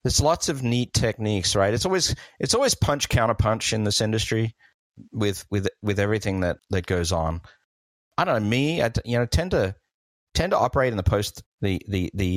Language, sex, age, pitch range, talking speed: English, male, 40-59, 85-110 Hz, 205 wpm